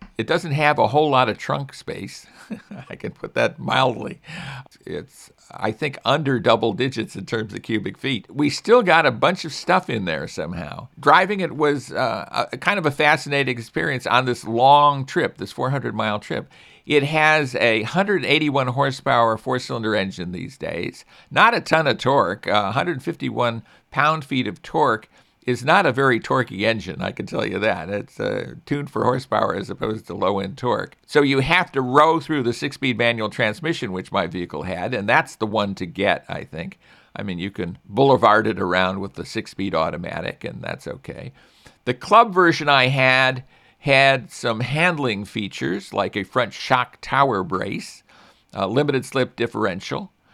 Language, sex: English, male